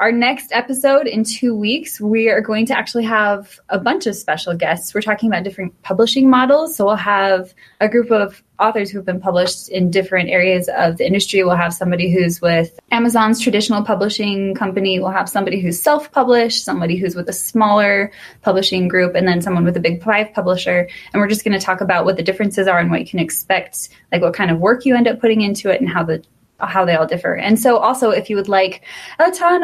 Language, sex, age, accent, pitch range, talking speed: English, female, 20-39, American, 185-230 Hz, 225 wpm